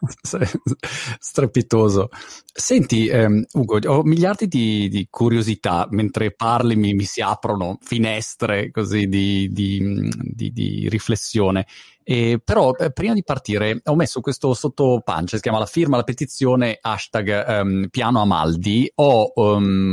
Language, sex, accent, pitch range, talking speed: Italian, male, native, 105-130 Hz, 130 wpm